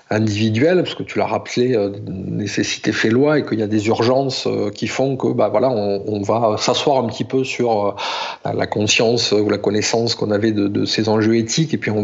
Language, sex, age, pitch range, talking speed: French, male, 50-69, 110-130 Hz, 215 wpm